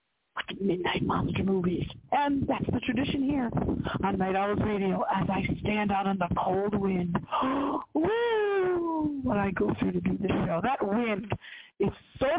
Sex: female